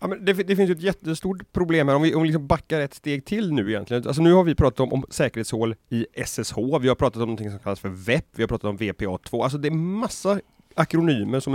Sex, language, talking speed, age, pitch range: male, Swedish, 230 wpm, 30-49, 105-155 Hz